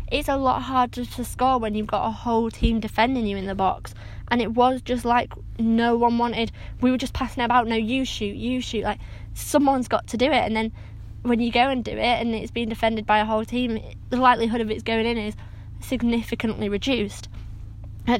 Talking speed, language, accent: 230 wpm, English, British